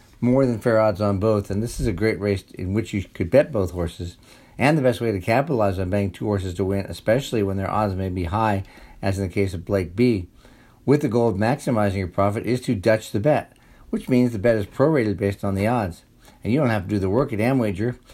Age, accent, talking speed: 50-69, American, 255 wpm